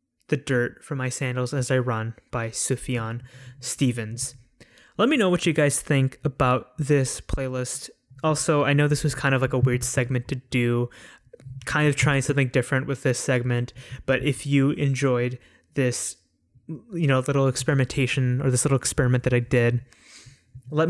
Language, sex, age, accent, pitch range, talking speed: English, male, 20-39, American, 125-140 Hz, 170 wpm